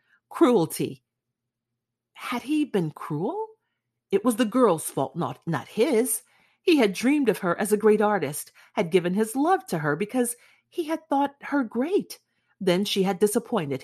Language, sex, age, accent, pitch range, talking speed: English, female, 40-59, American, 165-255 Hz, 165 wpm